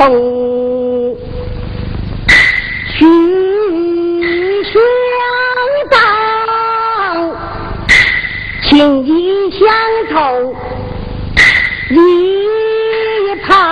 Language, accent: Chinese, American